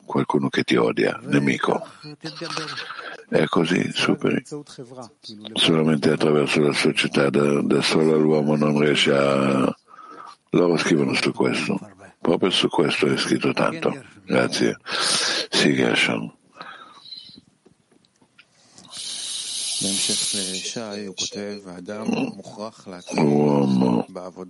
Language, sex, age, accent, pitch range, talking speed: Italian, male, 60-79, native, 70-80 Hz, 75 wpm